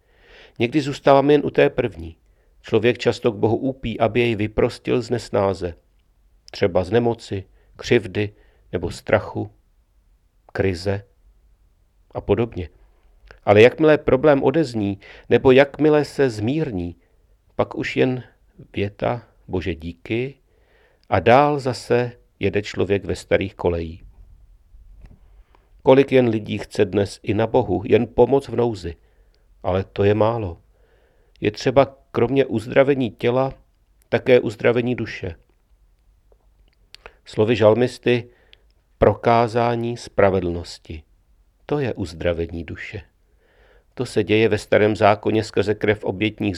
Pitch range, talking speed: 90-120 Hz, 115 wpm